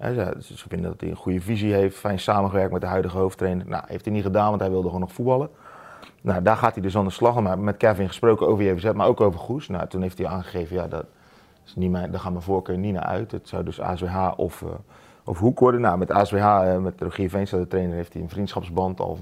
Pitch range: 95-110 Hz